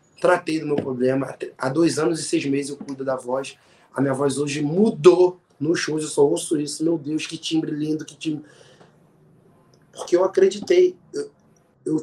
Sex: male